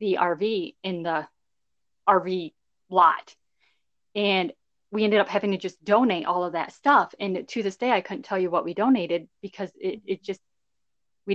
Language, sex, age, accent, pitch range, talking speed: English, female, 20-39, American, 175-210 Hz, 180 wpm